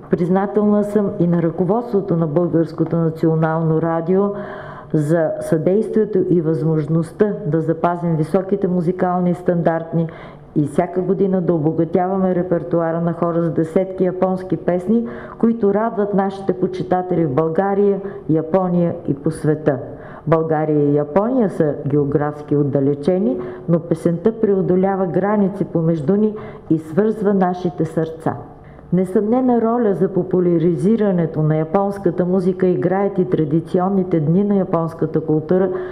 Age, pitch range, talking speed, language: 50-69, 160-190 Hz, 120 wpm, Bulgarian